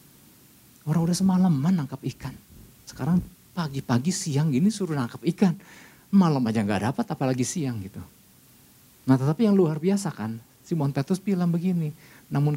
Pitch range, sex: 115-165 Hz, male